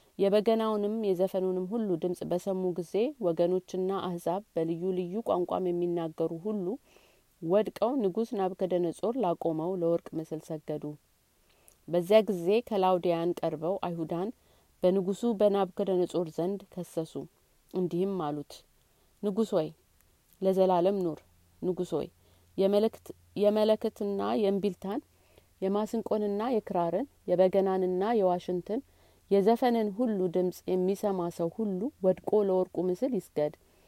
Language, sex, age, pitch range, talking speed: Amharic, female, 30-49, 170-210 Hz, 95 wpm